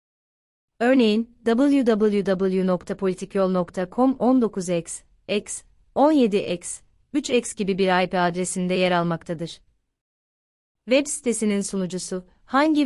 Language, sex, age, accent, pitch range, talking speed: Turkish, female, 30-49, native, 185-220 Hz, 60 wpm